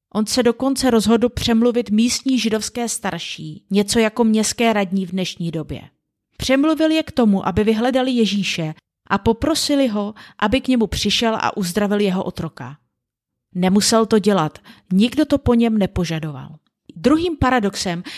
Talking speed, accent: 140 wpm, native